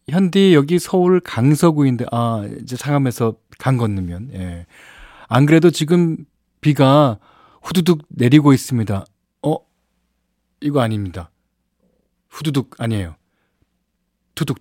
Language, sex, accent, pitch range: Korean, male, native, 110-160 Hz